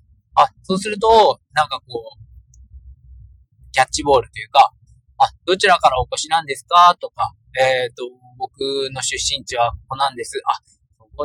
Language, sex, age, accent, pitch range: Japanese, male, 20-39, native, 115-190 Hz